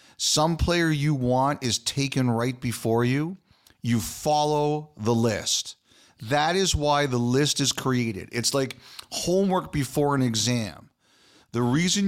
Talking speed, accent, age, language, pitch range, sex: 140 wpm, American, 40-59, English, 115-140 Hz, male